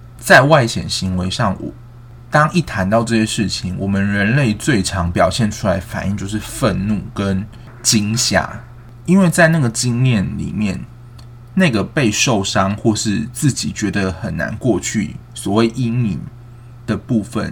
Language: Chinese